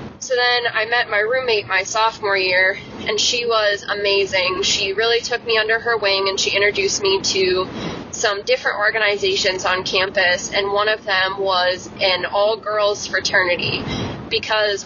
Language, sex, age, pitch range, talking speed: English, female, 20-39, 195-230 Hz, 160 wpm